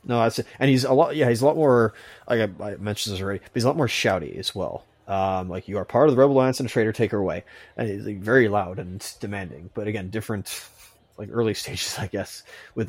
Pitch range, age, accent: 100-120 Hz, 30-49, American